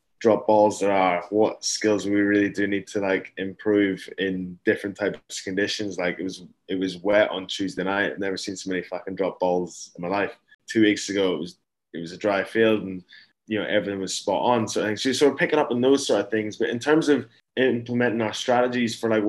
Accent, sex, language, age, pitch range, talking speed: British, male, English, 10-29, 95-110 Hz, 245 wpm